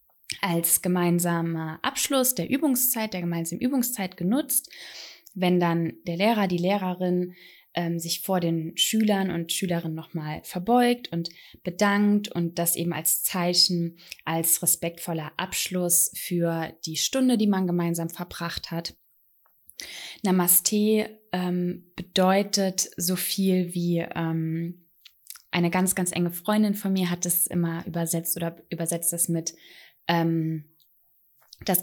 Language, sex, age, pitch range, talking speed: German, female, 20-39, 170-195 Hz, 125 wpm